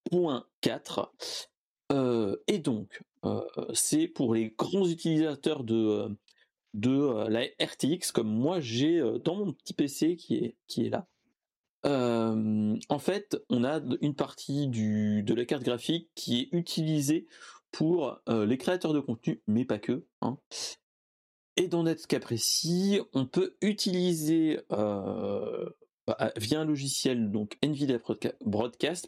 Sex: male